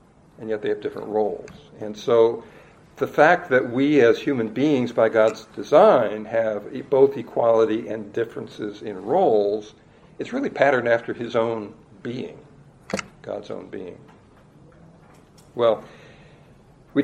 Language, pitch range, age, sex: English, 110-135 Hz, 60-79, male